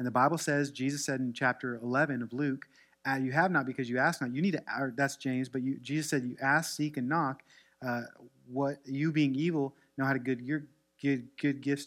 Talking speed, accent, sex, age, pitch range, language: 220 wpm, American, male, 30-49, 125-155 Hz, English